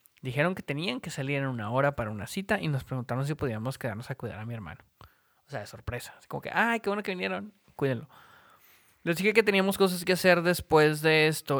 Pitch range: 130-165 Hz